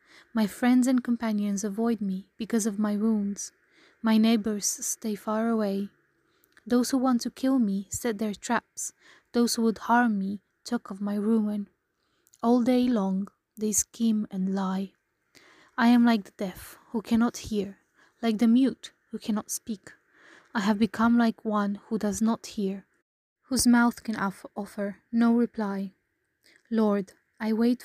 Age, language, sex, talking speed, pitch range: 20-39, English, female, 155 wpm, 205-235 Hz